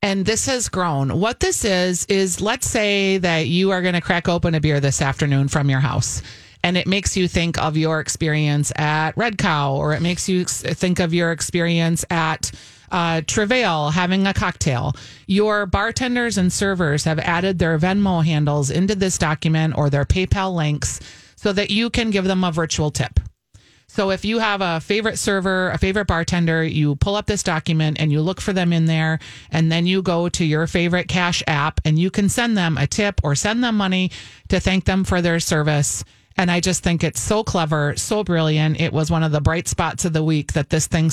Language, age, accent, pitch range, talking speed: English, 30-49, American, 150-185 Hz, 210 wpm